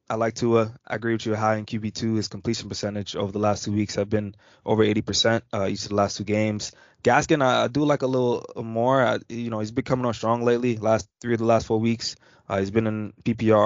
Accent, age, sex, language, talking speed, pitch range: American, 20-39, male, English, 250 wpm, 105-120 Hz